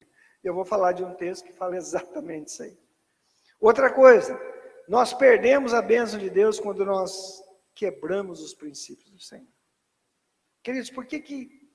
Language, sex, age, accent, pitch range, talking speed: Portuguese, male, 50-69, Brazilian, 185-270 Hz, 155 wpm